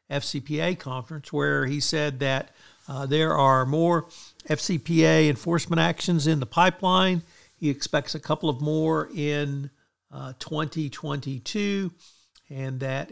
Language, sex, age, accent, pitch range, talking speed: English, male, 50-69, American, 135-170 Hz, 125 wpm